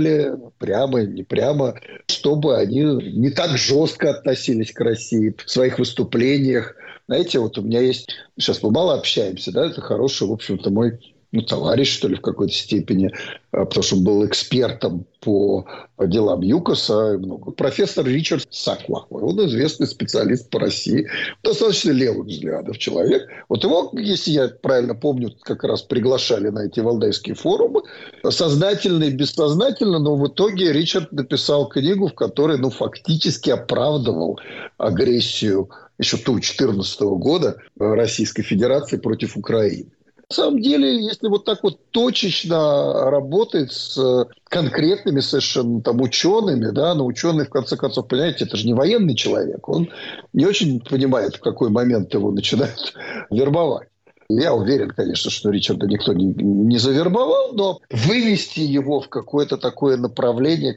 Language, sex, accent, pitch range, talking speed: Russian, male, native, 120-170 Hz, 145 wpm